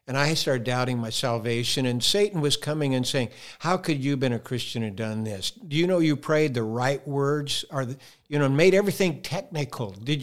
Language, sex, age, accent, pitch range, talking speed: English, male, 60-79, American, 125-160 Hz, 215 wpm